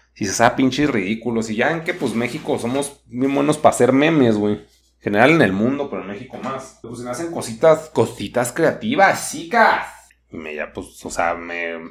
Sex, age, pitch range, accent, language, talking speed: male, 30-49, 105-135 Hz, Mexican, Spanish, 200 wpm